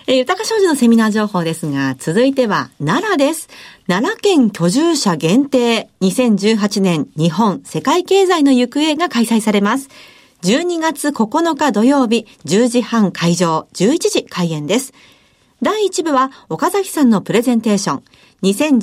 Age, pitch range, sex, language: 50-69, 195-290 Hz, female, Japanese